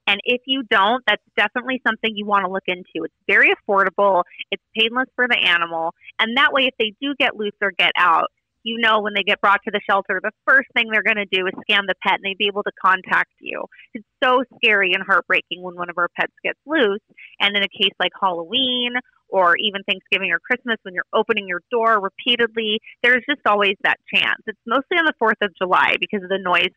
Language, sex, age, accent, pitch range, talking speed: English, female, 30-49, American, 190-235 Hz, 230 wpm